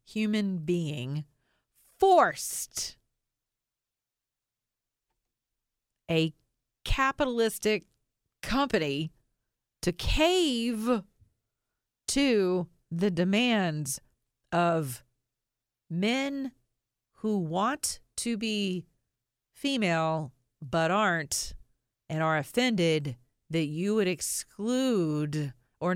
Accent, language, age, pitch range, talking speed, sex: American, English, 40-59, 140-195 Hz, 65 wpm, female